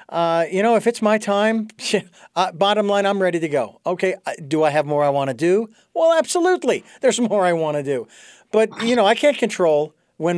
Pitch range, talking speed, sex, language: 180-230 Hz, 210 wpm, male, English